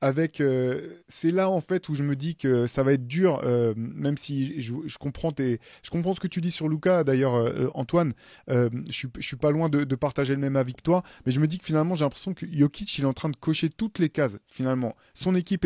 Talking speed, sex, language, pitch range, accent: 270 wpm, male, French, 135-165 Hz, French